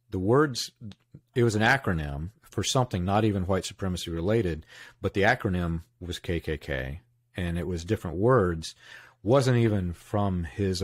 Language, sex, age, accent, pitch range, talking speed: English, male, 40-59, American, 90-120 Hz, 150 wpm